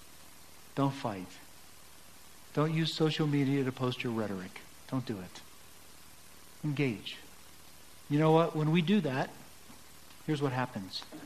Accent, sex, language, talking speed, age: American, male, English, 130 wpm, 50-69